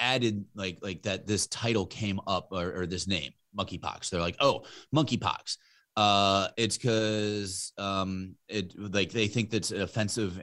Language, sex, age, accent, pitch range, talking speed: English, male, 30-49, American, 95-115 Hz, 160 wpm